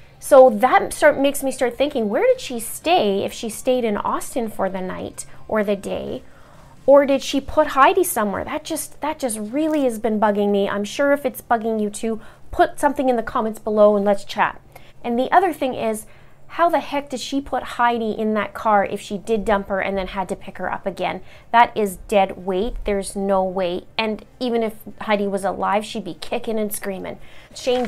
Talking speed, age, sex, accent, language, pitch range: 215 wpm, 30-49, female, American, English, 205-255 Hz